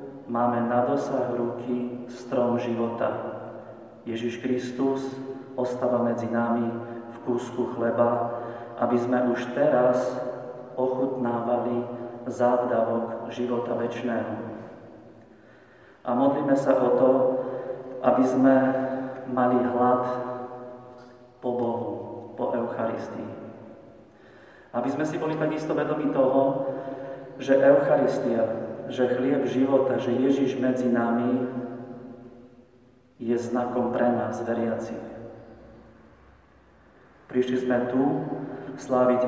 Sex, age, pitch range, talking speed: male, 40-59, 120-130 Hz, 90 wpm